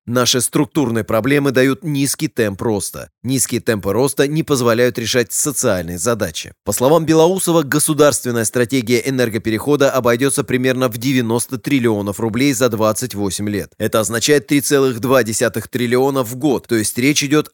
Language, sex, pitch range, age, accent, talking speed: Russian, male, 115-140 Hz, 20-39, native, 135 wpm